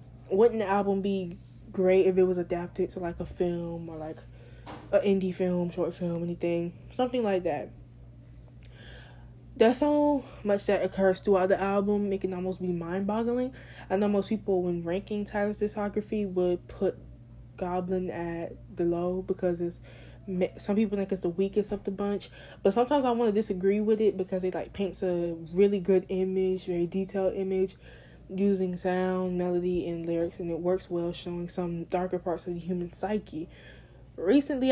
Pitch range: 175-200 Hz